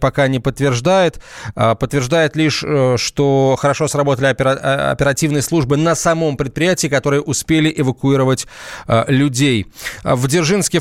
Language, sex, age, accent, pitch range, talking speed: Russian, male, 20-39, native, 125-155 Hz, 105 wpm